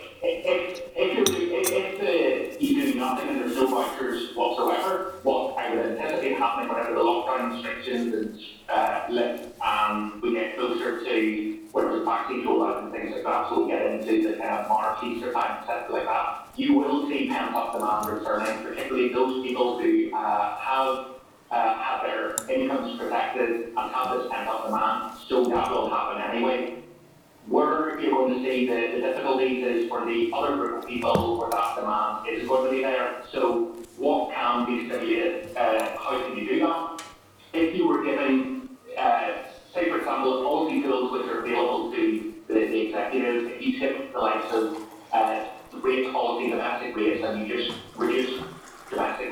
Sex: male